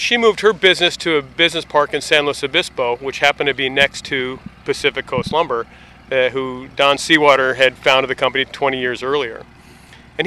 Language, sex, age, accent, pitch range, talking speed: English, male, 40-59, American, 135-160 Hz, 195 wpm